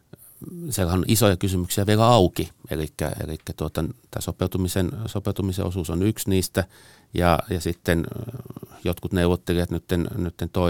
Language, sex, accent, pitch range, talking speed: Finnish, male, native, 80-100 Hz, 125 wpm